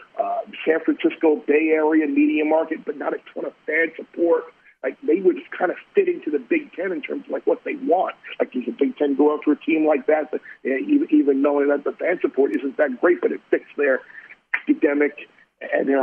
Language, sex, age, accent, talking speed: English, male, 50-69, American, 230 wpm